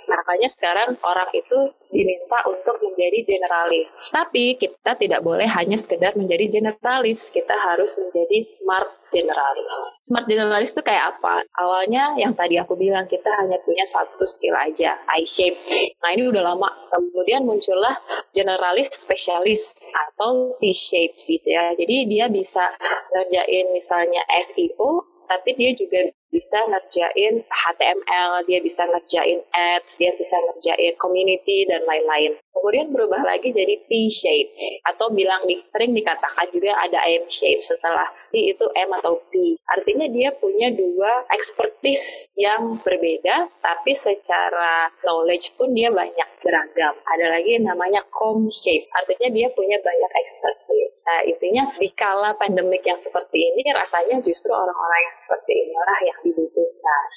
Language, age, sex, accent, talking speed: Indonesian, 20-39, female, native, 135 wpm